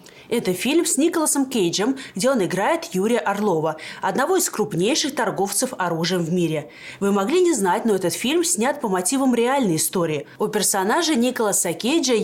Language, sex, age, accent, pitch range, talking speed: Russian, female, 20-39, native, 180-275 Hz, 160 wpm